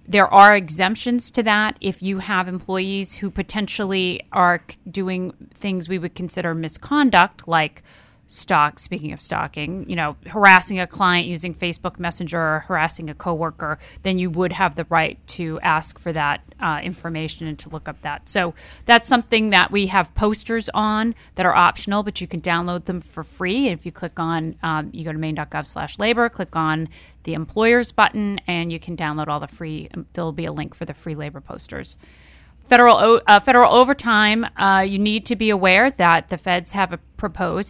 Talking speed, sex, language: 190 wpm, female, English